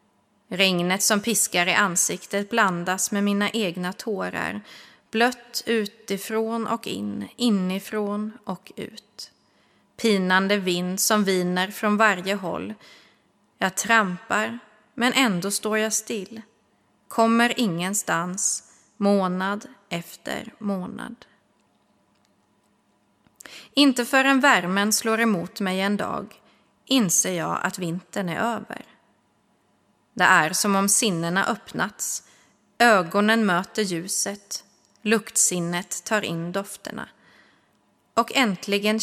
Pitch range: 185-225 Hz